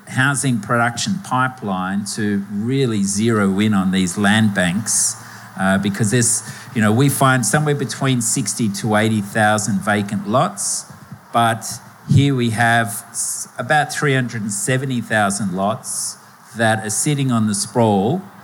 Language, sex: English, male